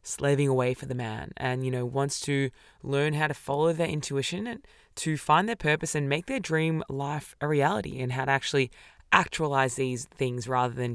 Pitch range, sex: 125-145 Hz, female